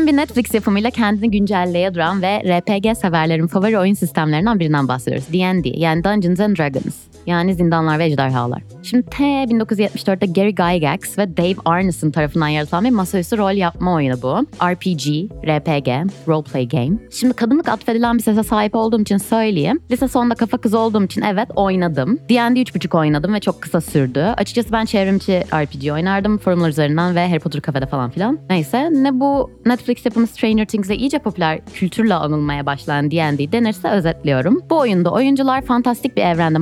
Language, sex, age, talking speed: Turkish, female, 20-39, 165 wpm